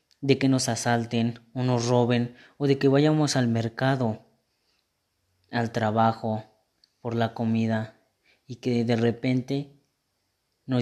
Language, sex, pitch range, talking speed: Spanish, female, 115-130 Hz, 130 wpm